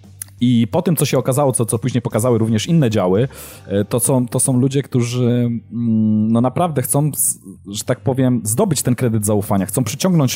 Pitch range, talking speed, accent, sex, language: 115-145 Hz, 180 wpm, native, male, Polish